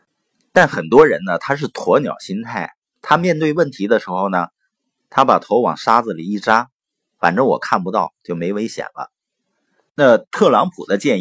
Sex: male